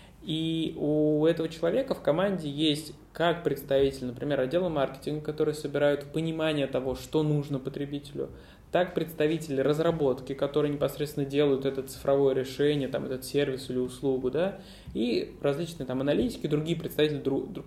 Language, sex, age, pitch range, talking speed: Russian, male, 20-39, 135-160 Hz, 140 wpm